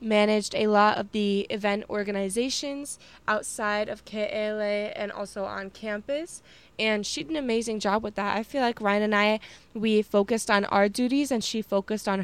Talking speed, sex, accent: 180 wpm, female, American